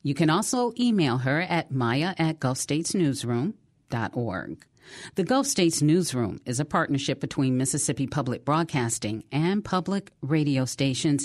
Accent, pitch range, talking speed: American, 125-170 Hz, 130 wpm